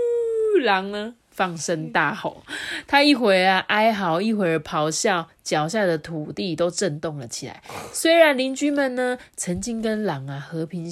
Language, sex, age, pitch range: Chinese, female, 20-39, 150-200 Hz